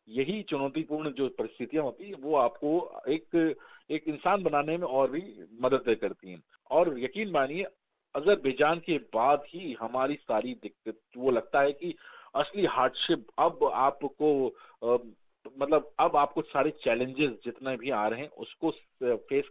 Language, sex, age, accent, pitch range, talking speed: Hindi, male, 40-59, native, 115-165 Hz, 150 wpm